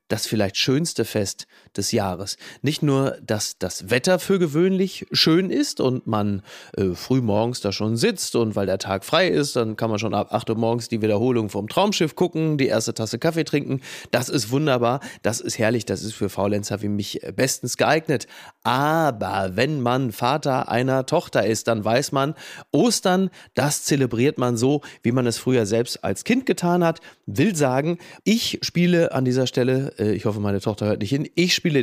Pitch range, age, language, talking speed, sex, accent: 110-150 Hz, 30-49, German, 190 wpm, male, German